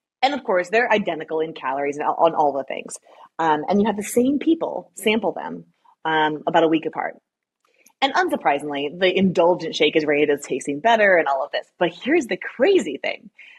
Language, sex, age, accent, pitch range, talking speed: English, female, 30-49, American, 160-240 Hz, 195 wpm